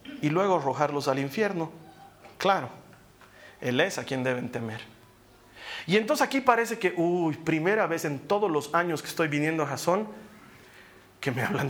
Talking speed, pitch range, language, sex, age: 165 wpm, 125-175 Hz, Spanish, male, 40-59